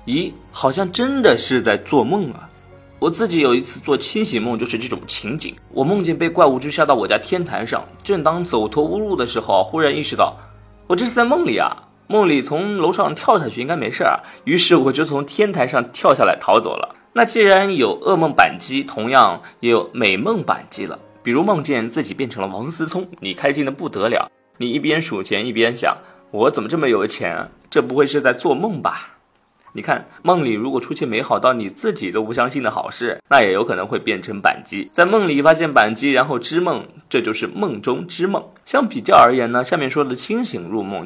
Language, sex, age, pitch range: Chinese, male, 30-49, 125-205 Hz